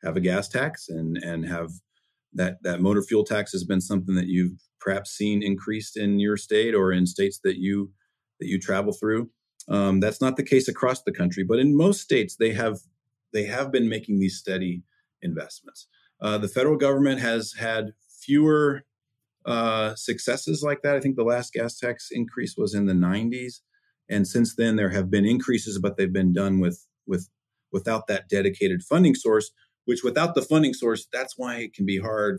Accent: American